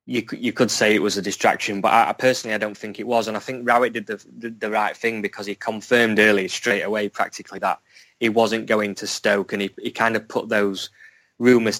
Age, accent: 20-39, British